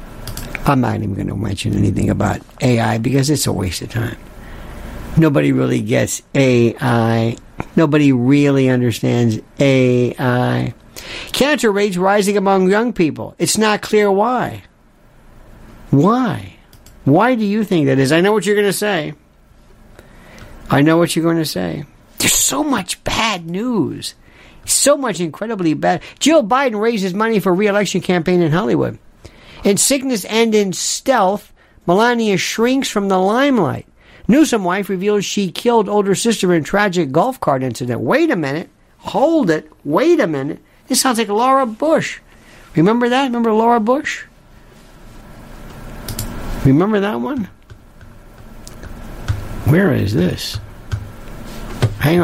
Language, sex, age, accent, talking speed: English, male, 60-79, American, 135 wpm